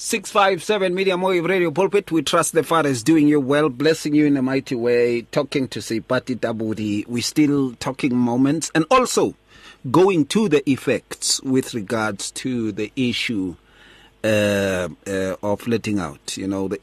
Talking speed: 165 wpm